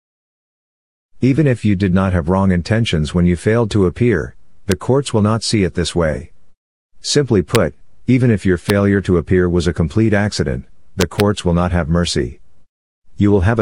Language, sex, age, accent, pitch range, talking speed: Hindi, male, 50-69, American, 85-105 Hz, 185 wpm